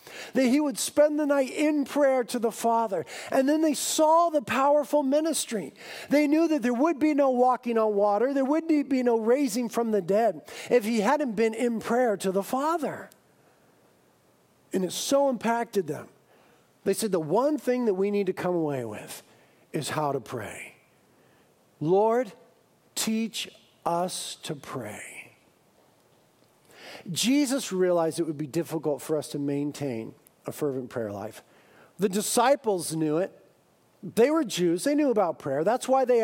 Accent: American